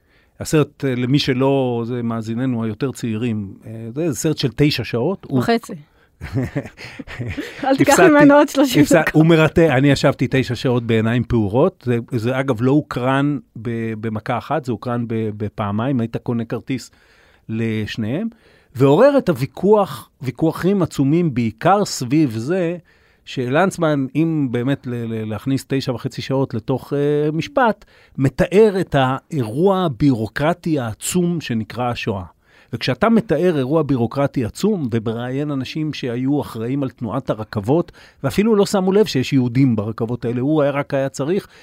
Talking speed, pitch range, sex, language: 125 wpm, 120-155 Hz, male, Hebrew